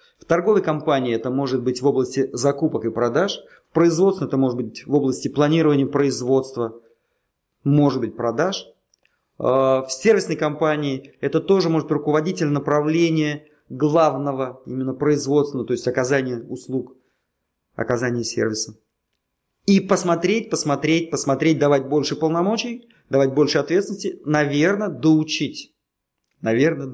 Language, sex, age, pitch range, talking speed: Russian, male, 30-49, 125-160 Hz, 120 wpm